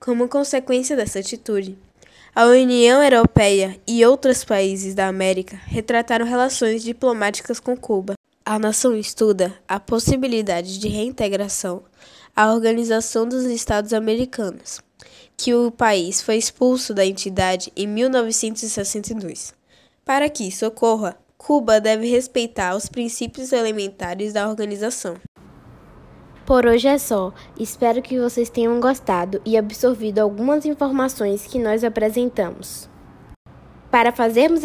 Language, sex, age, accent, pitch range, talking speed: Portuguese, female, 10-29, Brazilian, 200-245 Hz, 120 wpm